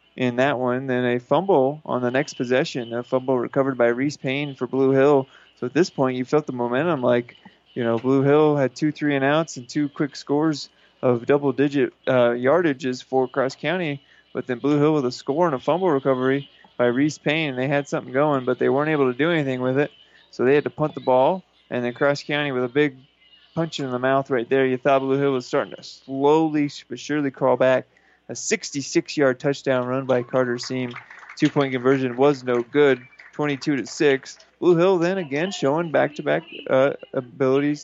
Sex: male